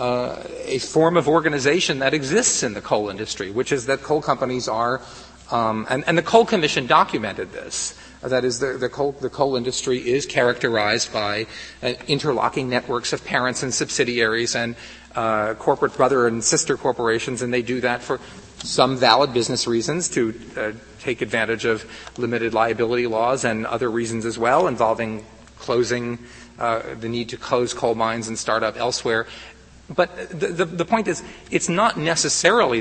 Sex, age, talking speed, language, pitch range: male, 40-59, 165 wpm, English, 115-140 Hz